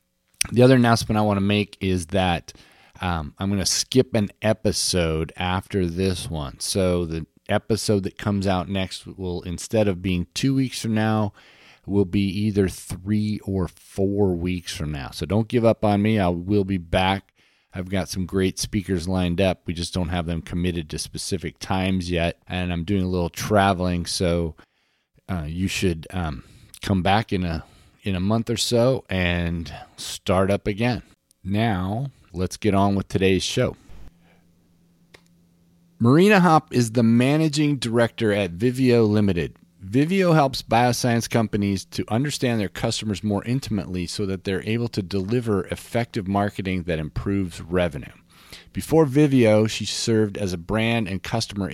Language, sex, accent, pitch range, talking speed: English, male, American, 90-110 Hz, 160 wpm